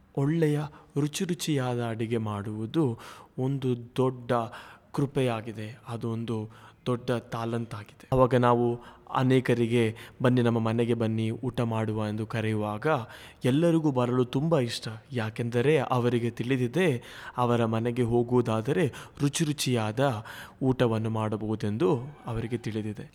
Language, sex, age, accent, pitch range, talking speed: Kannada, male, 20-39, native, 115-135 Hz, 100 wpm